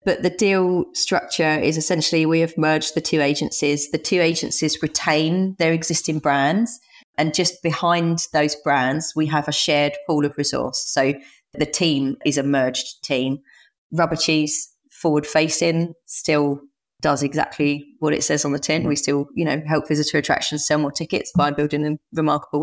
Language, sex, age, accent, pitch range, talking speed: English, female, 30-49, British, 145-165 Hz, 170 wpm